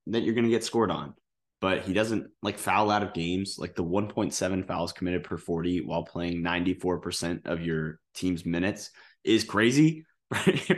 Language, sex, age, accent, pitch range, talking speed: English, male, 20-39, American, 90-105 Hz, 185 wpm